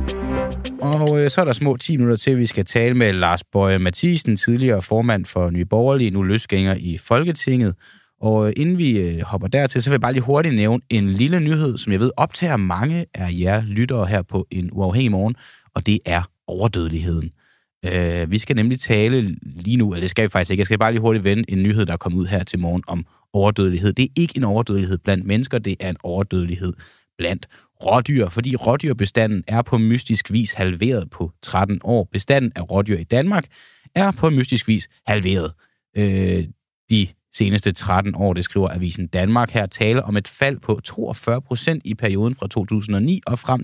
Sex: male